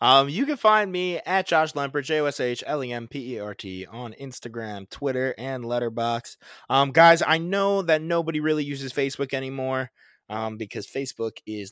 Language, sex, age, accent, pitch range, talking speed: English, male, 20-39, American, 110-145 Hz, 145 wpm